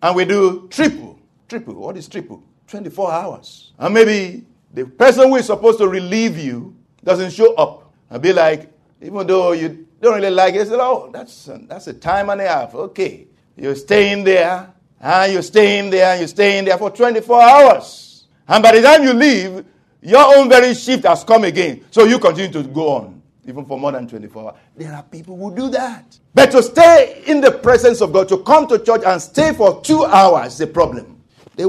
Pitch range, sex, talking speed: 155-225 Hz, male, 205 wpm